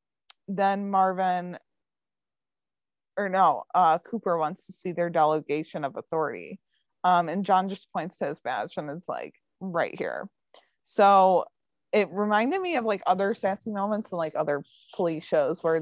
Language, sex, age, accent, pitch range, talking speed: English, female, 20-39, American, 165-195 Hz, 155 wpm